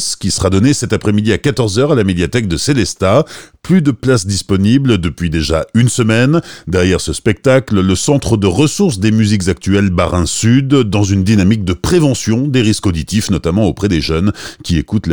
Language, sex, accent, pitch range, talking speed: French, male, French, 95-135 Hz, 185 wpm